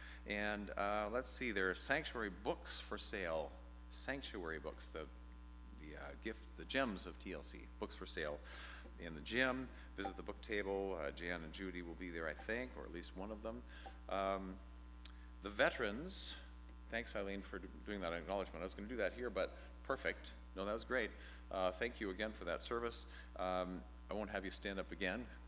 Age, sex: 50-69, male